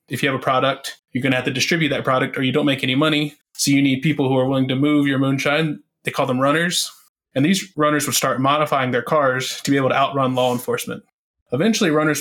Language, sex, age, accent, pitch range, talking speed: English, male, 20-39, American, 130-150 Hz, 250 wpm